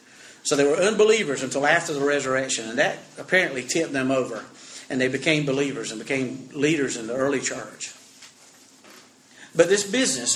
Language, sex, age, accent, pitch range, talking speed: English, male, 50-69, American, 135-170 Hz, 160 wpm